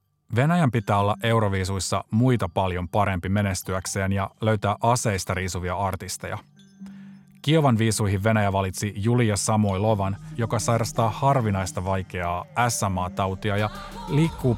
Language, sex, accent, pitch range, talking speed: Finnish, male, native, 95-120 Hz, 110 wpm